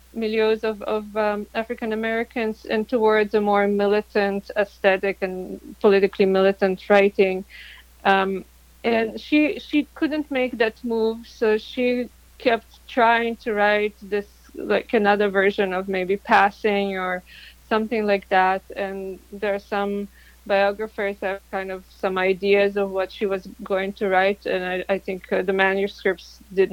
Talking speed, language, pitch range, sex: 150 wpm, English, 195-220 Hz, female